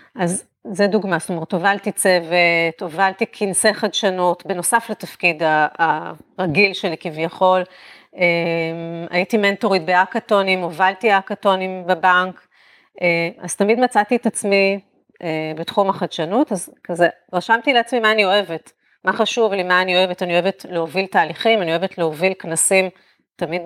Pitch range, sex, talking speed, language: 175-215 Hz, female, 125 wpm, Hebrew